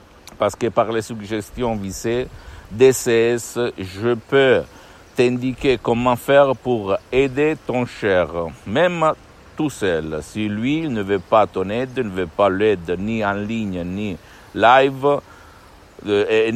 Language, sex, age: Italian, male, 60-79